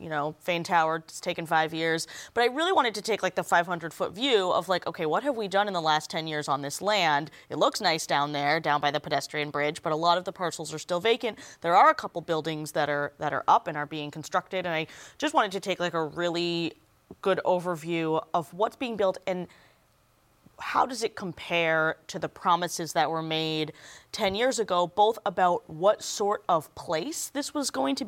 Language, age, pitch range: English, 20-39, 160-210 Hz